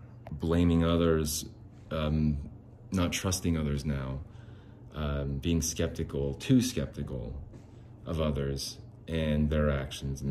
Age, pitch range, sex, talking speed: 30-49, 75-110 Hz, male, 105 wpm